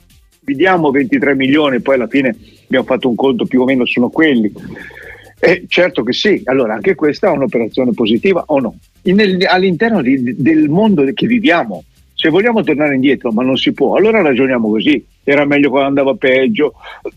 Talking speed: 180 wpm